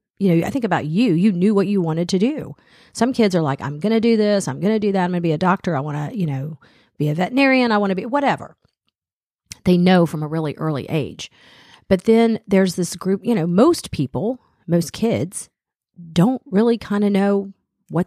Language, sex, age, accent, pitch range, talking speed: English, female, 40-59, American, 155-200 Hz, 230 wpm